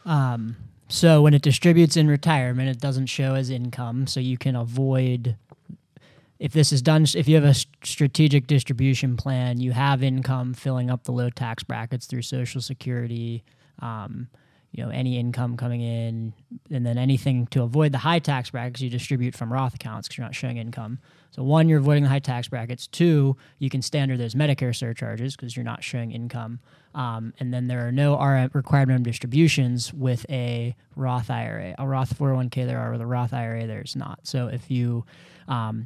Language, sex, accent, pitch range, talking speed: English, male, American, 125-145 Hz, 190 wpm